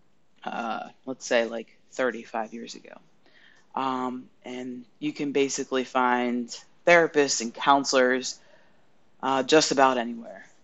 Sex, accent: female, American